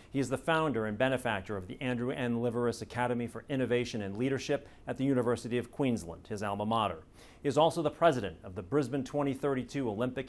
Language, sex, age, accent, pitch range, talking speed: English, male, 40-59, American, 100-125 Hz, 200 wpm